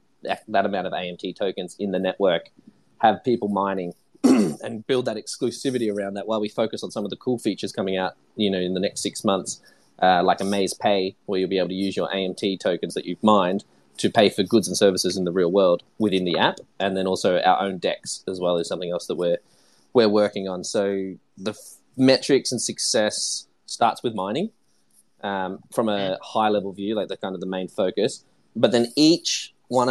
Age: 20-39